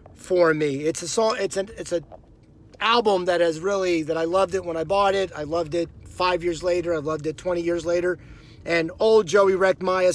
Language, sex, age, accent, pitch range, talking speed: English, male, 30-49, American, 160-195 Hz, 215 wpm